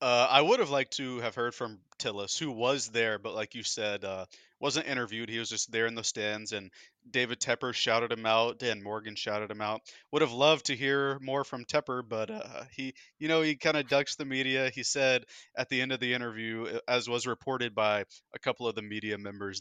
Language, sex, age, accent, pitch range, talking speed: English, male, 20-39, American, 105-130 Hz, 230 wpm